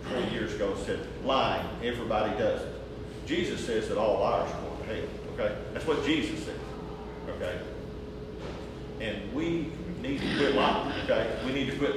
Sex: male